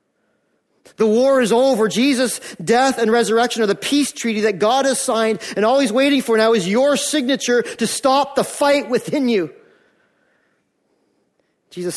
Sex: male